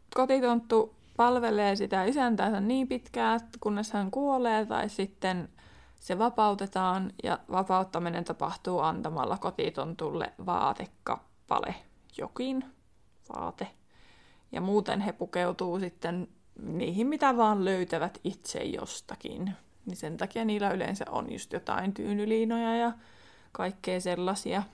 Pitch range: 185-225 Hz